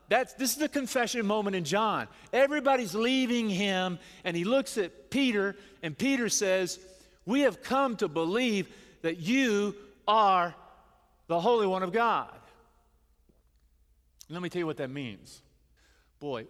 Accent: American